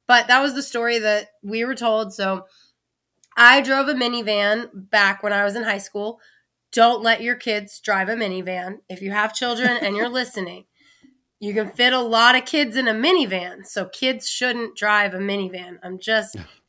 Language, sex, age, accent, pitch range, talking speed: English, female, 20-39, American, 195-245 Hz, 190 wpm